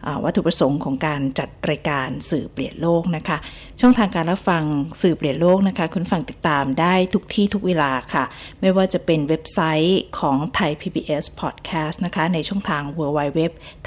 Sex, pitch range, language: female, 155-190 Hz, Thai